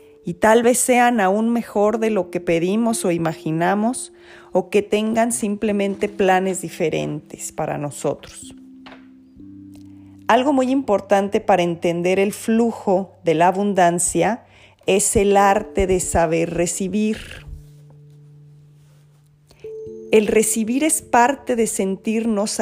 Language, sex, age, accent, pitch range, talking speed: Spanish, female, 40-59, Mexican, 160-210 Hz, 110 wpm